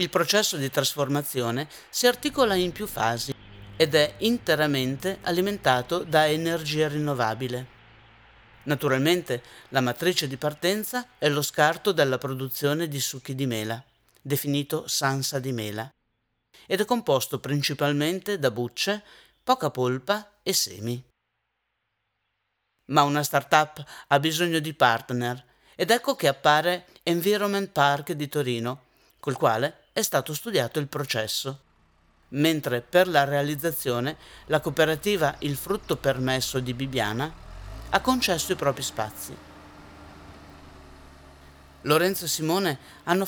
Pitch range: 125-165 Hz